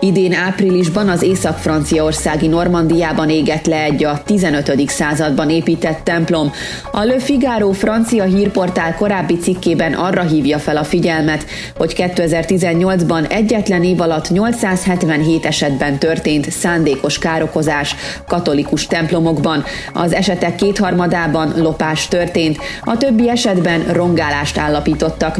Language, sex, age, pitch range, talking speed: Hungarian, female, 30-49, 160-190 Hz, 110 wpm